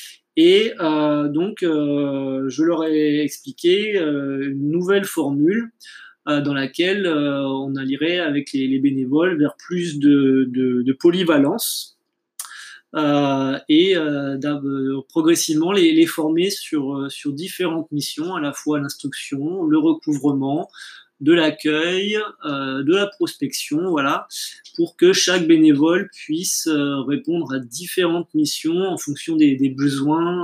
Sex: male